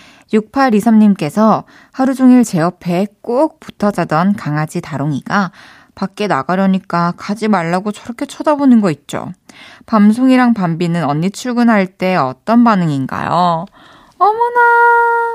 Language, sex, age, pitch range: Korean, female, 20-39, 170-260 Hz